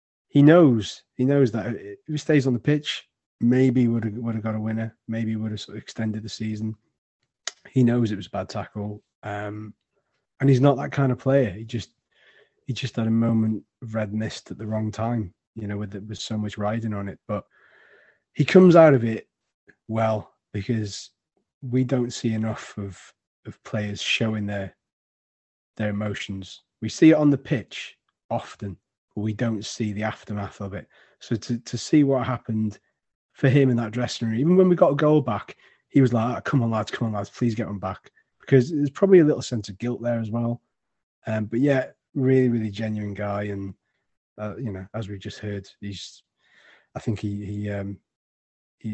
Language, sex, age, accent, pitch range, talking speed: English, male, 30-49, British, 105-125 Hz, 200 wpm